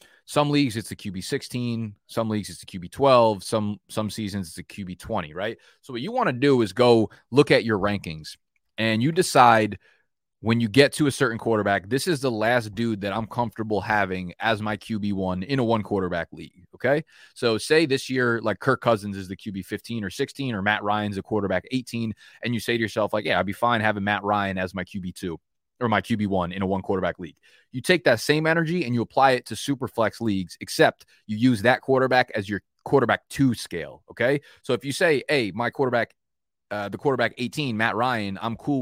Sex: male